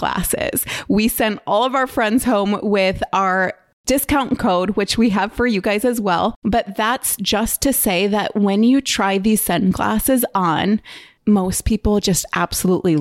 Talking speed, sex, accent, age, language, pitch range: 165 wpm, female, American, 20-39, English, 190-230 Hz